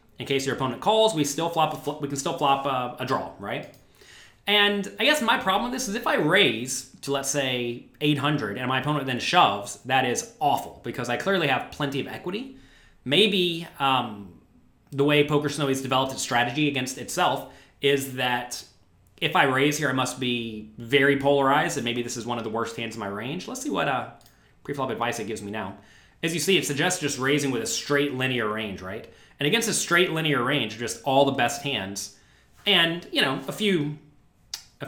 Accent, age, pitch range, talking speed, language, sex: American, 30-49, 115-145 Hz, 210 wpm, English, male